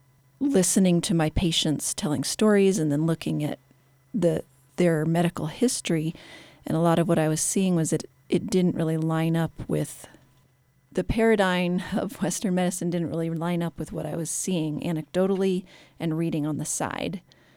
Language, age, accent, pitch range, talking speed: English, 40-59, American, 145-180 Hz, 170 wpm